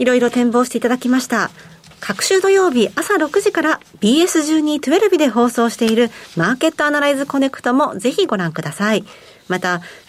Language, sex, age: Japanese, female, 40-59